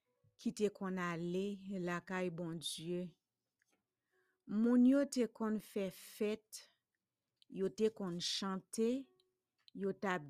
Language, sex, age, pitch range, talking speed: English, female, 50-69, 180-225 Hz, 115 wpm